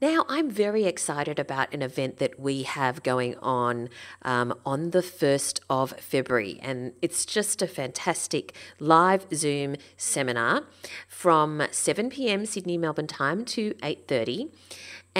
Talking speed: 135 wpm